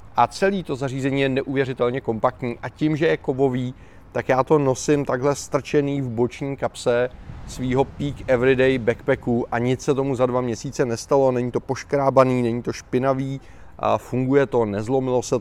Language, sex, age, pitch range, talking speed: Czech, male, 30-49, 115-135 Hz, 170 wpm